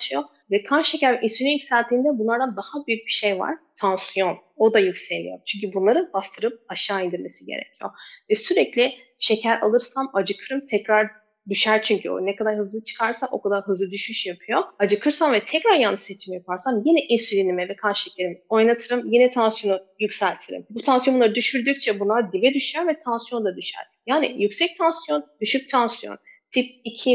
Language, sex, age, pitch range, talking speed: Turkish, female, 30-49, 200-250 Hz, 160 wpm